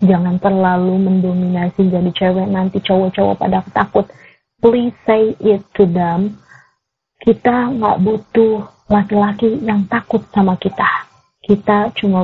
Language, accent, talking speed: Indonesian, native, 120 wpm